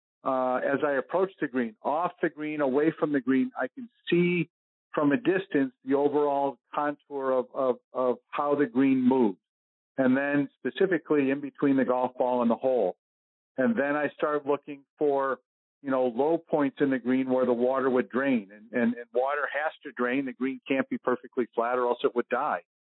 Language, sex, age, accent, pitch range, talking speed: English, male, 50-69, American, 125-145 Hz, 200 wpm